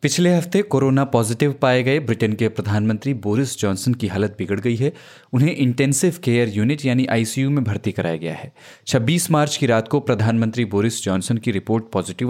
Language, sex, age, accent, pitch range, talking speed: Hindi, male, 20-39, native, 105-135 Hz, 185 wpm